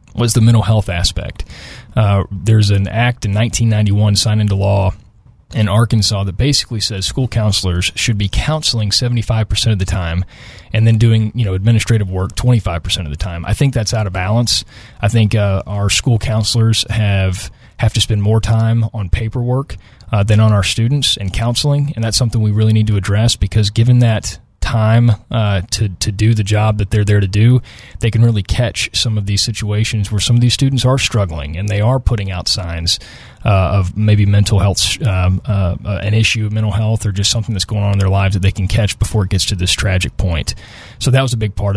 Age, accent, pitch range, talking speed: 30-49, American, 100-115 Hz, 215 wpm